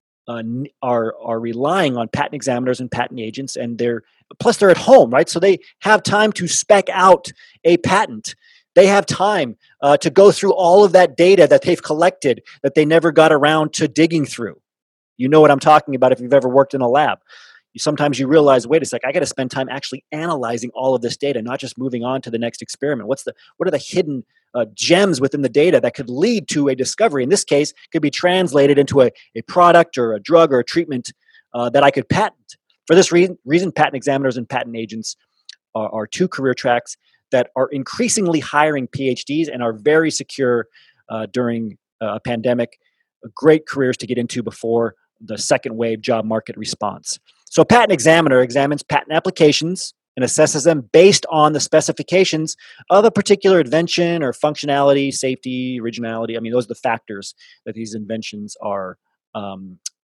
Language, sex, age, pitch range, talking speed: English, male, 30-49, 120-165 Hz, 195 wpm